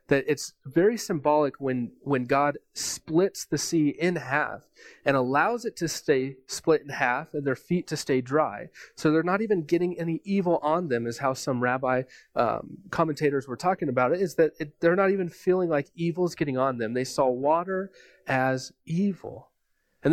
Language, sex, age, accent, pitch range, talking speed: English, male, 30-49, American, 135-180 Hz, 190 wpm